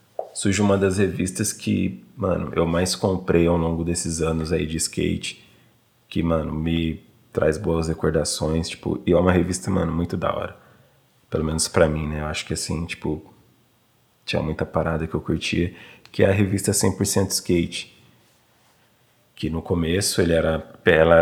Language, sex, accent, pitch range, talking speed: Portuguese, male, Brazilian, 85-100 Hz, 165 wpm